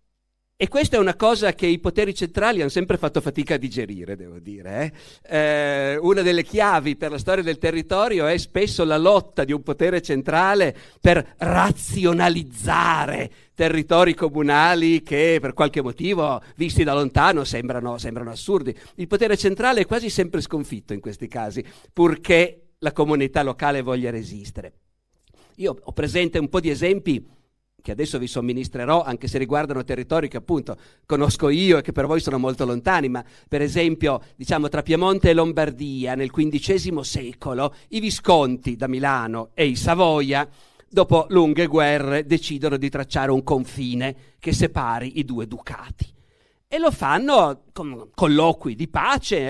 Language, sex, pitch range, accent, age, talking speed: Italian, male, 130-170 Hz, native, 50-69, 155 wpm